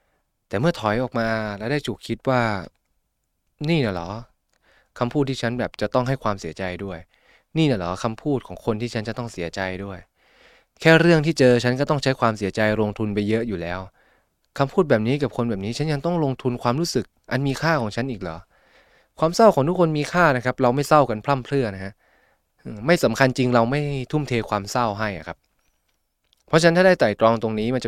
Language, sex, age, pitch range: Thai, male, 20-39, 100-140 Hz